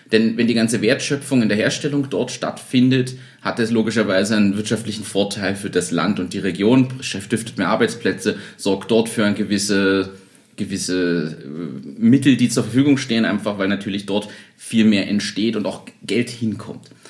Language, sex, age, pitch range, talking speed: German, male, 30-49, 105-130 Hz, 170 wpm